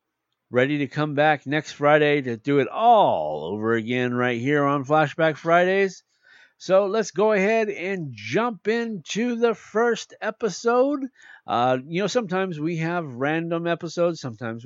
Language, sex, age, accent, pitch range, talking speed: English, male, 50-69, American, 140-220 Hz, 145 wpm